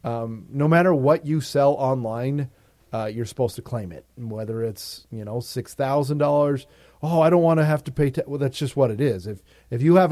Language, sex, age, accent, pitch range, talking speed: English, male, 40-59, American, 115-145 Hz, 225 wpm